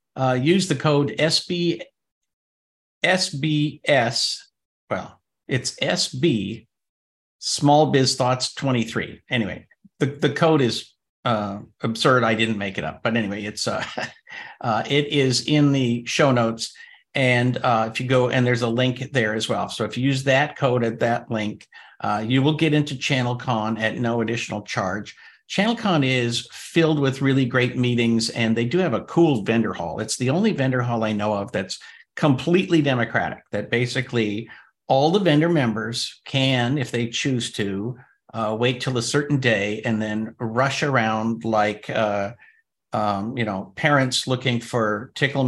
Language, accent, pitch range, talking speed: English, American, 115-140 Hz, 165 wpm